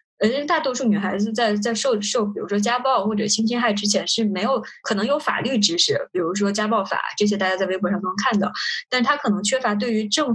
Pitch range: 205-245 Hz